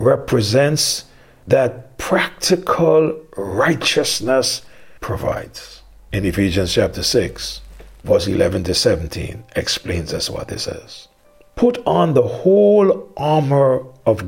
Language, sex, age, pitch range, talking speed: English, male, 60-79, 115-180 Hz, 100 wpm